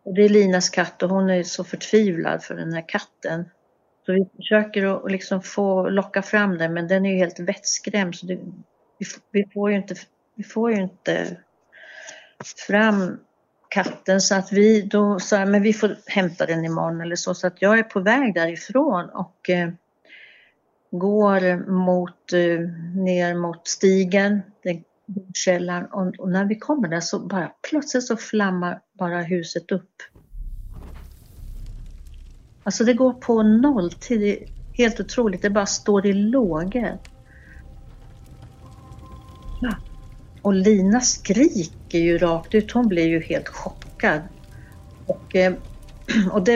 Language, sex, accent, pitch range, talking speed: Swedish, female, native, 180-210 Hz, 140 wpm